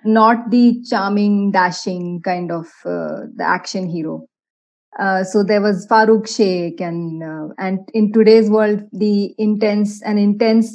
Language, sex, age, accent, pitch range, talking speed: Hindi, female, 20-39, native, 185-220 Hz, 145 wpm